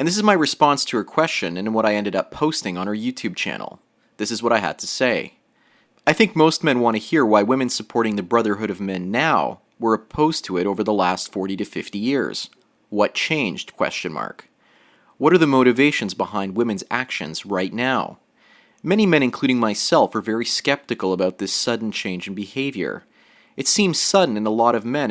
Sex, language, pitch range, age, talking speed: male, English, 105-145 Hz, 30-49, 205 wpm